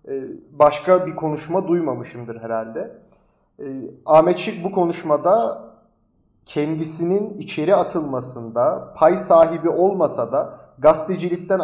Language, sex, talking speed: Turkish, male, 90 wpm